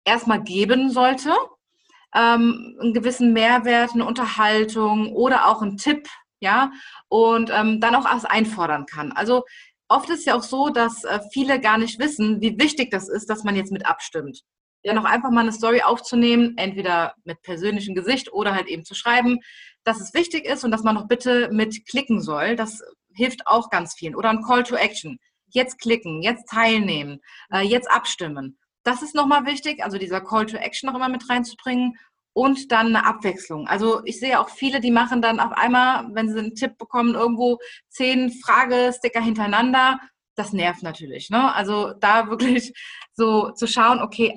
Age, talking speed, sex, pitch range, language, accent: 30-49, 175 wpm, female, 215-250 Hz, German, German